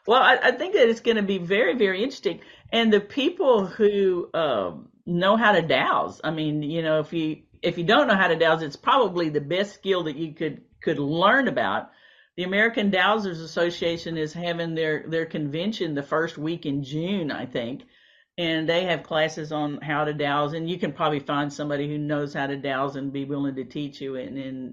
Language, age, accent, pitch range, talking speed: English, 50-69, American, 140-175 Hz, 210 wpm